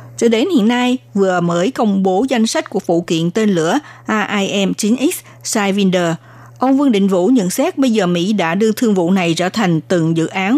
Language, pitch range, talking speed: Vietnamese, 175-240 Hz, 215 wpm